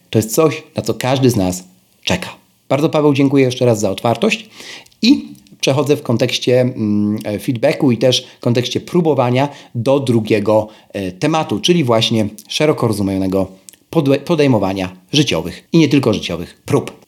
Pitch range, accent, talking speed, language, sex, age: 110-160 Hz, native, 140 wpm, Polish, male, 40-59